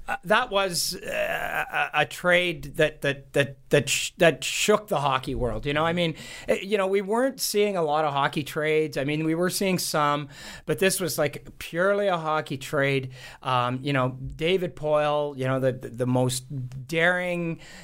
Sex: male